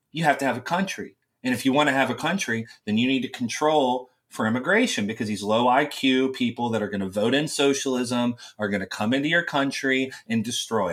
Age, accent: 30-49, American